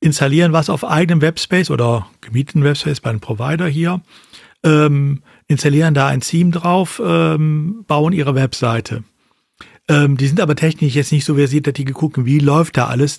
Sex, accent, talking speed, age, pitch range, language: male, German, 170 wpm, 50-69, 135-165 Hz, German